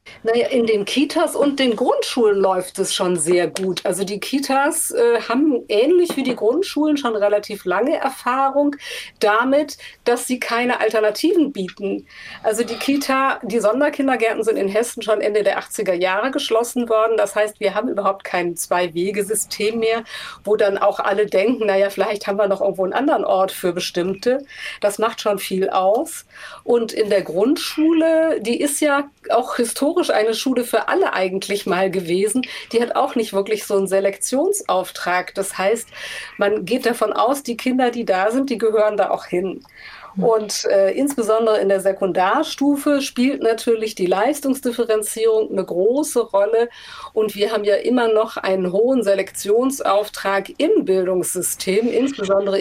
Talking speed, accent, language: 160 wpm, German, German